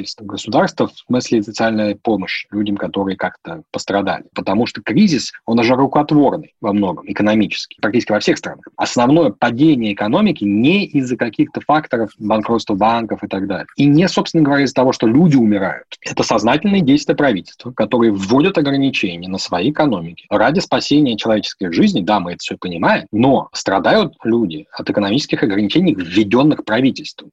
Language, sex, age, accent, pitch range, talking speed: Russian, male, 20-39, native, 100-125 Hz, 155 wpm